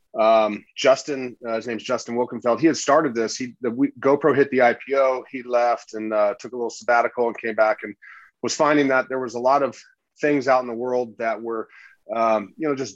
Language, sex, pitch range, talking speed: English, male, 110-130 Hz, 225 wpm